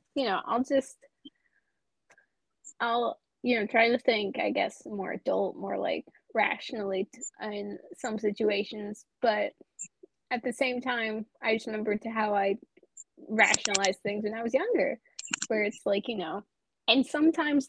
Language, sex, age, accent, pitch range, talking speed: English, female, 20-39, American, 205-280 Hz, 150 wpm